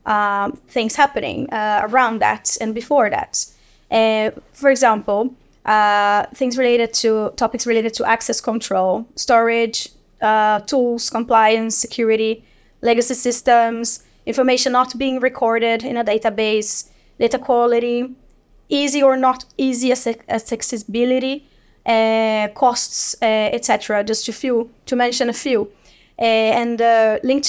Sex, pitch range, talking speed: female, 215-250 Hz, 120 wpm